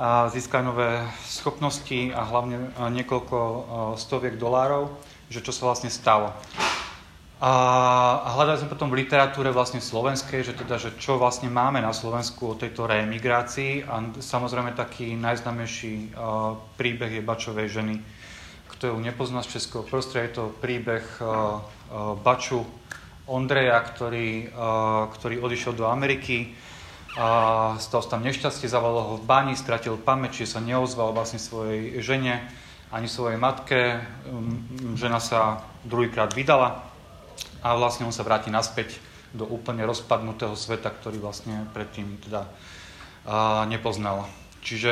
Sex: male